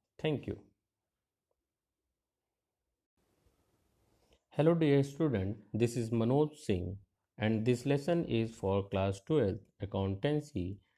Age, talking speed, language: 50-69, 95 wpm, English